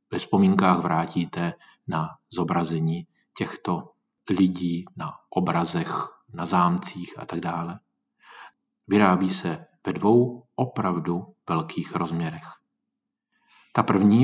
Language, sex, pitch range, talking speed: Czech, male, 90-120 Hz, 95 wpm